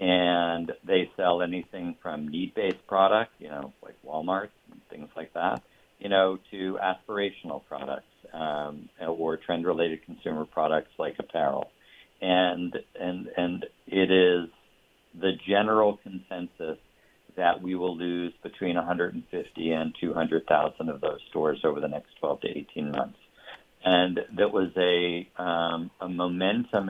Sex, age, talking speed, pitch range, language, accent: male, 50-69, 135 wpm, 85-95 Hz, English, American